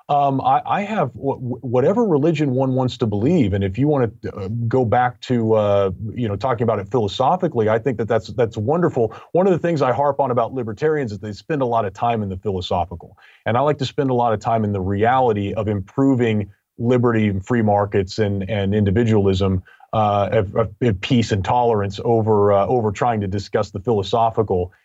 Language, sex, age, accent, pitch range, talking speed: English, male, 30-49, American, 100-140 Hz, 210 wpm